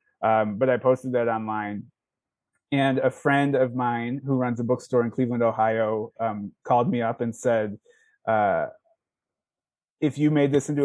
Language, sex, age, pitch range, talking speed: English, male, 20-39, 115-140 Hz, 165 wpm